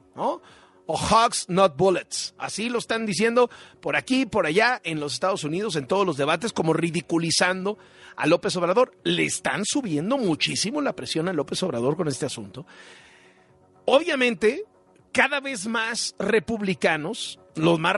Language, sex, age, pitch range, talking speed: Spanish, male, 40-59, 175-260 Hz, 145 wpm